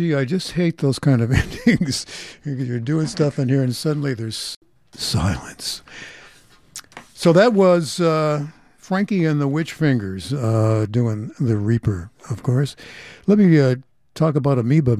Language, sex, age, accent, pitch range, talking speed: English, male, 60-79, American, 115-155 Hz, 150 wpm